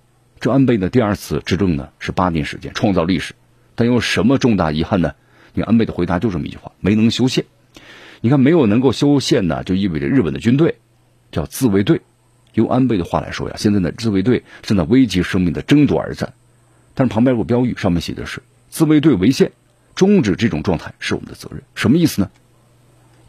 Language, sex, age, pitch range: Chinese, male, 50-69, 95-125 Hz